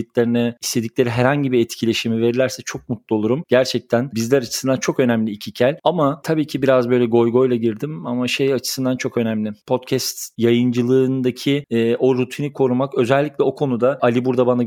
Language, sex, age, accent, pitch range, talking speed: Turkish, male, 40-59, native, 120-130 Hz, 165 wpm